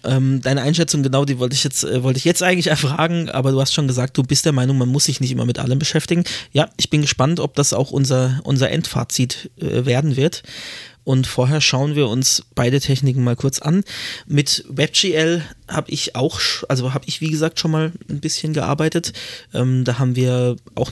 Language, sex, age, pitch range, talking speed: German, male, 20-39, 125-155 Hz, 200 wpm